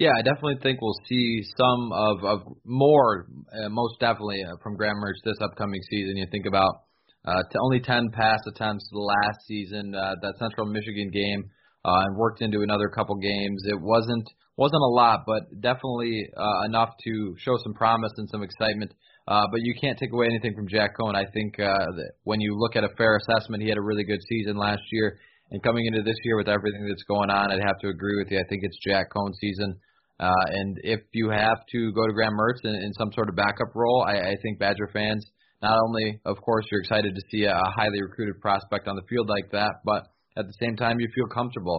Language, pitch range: English, 100-115 Hz